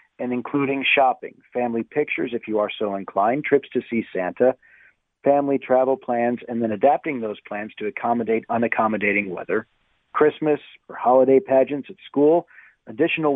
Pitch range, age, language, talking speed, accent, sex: 110-135 Hz, 40-59, English, 150 wpm, American, male